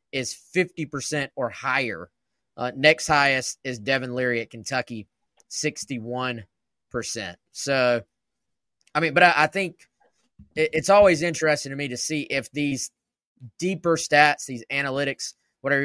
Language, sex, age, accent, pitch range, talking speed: English, male, 20-39, American, 125-160 Hz, 130 wpm